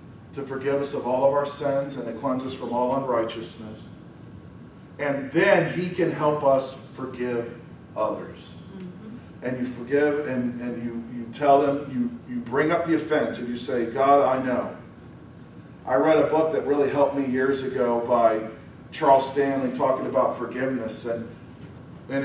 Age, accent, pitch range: 40-59, American, 130-160 Hz